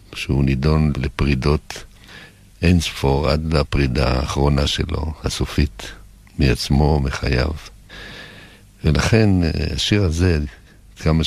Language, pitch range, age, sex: Hebrew, 70-90 Hz, 60-79, male